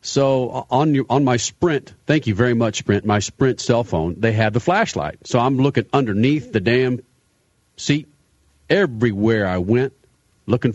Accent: American